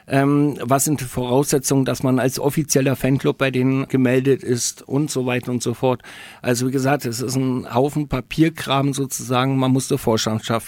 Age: 50-69